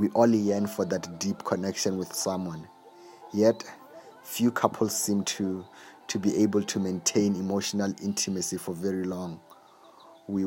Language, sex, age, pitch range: English, male, 30-49, 95-105 Hz